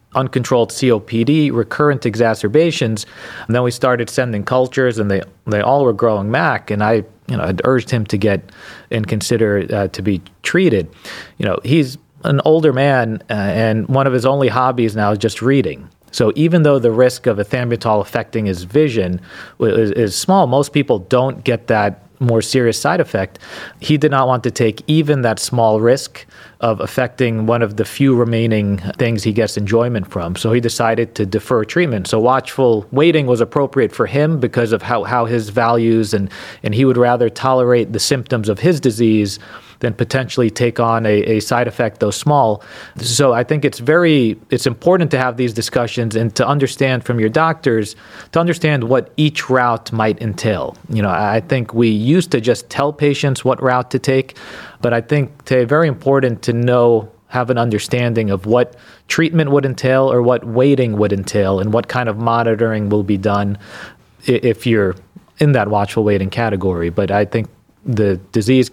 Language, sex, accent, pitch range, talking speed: English, male, American, 110-130 Hz, 185 wpm